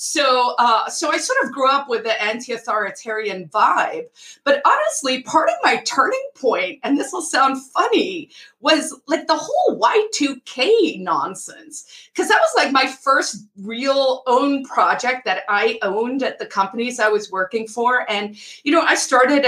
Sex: female